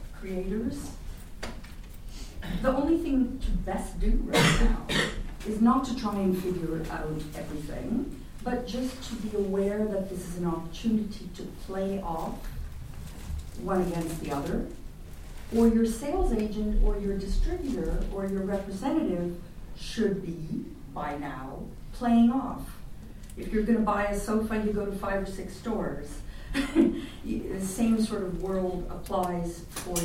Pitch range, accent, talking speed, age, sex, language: 160-210 Hz, American, 140 wpm, 50-69, female, English